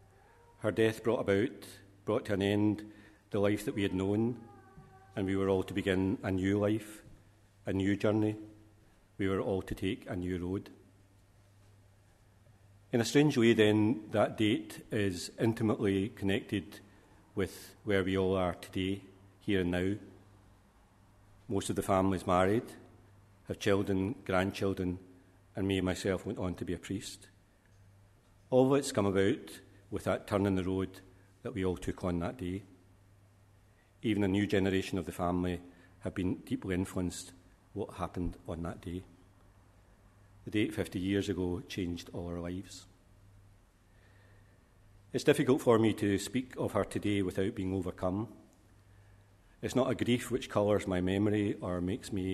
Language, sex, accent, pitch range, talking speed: English, male, British, 95-105 Hz, 155 wpm